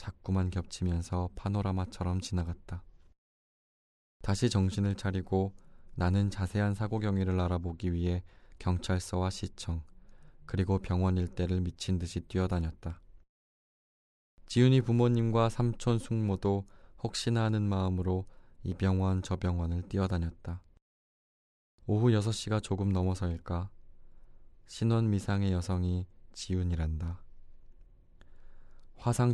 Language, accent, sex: Korean, native, male